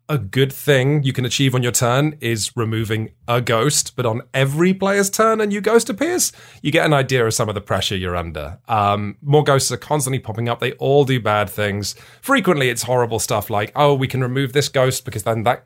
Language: English